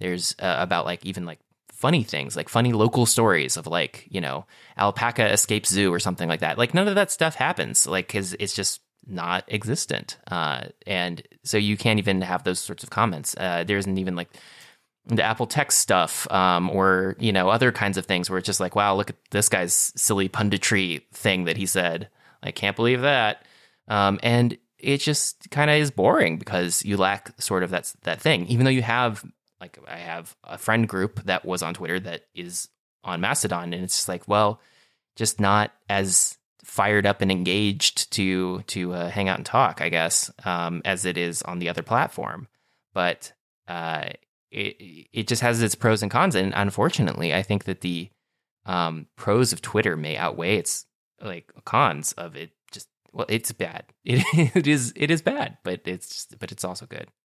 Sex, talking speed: male, 195 wpm